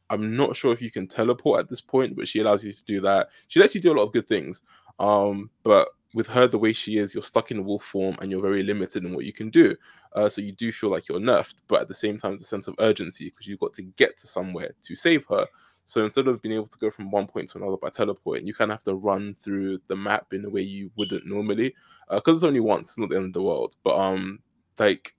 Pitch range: 95-110 Hz